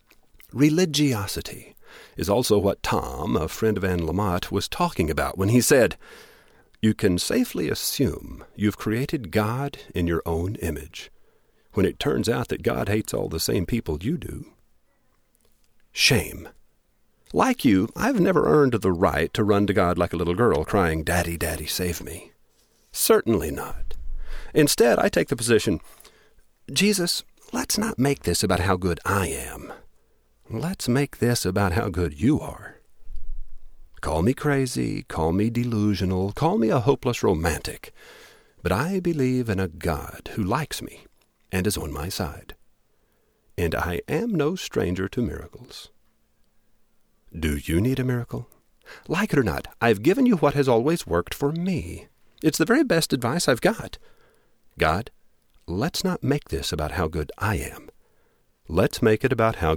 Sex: male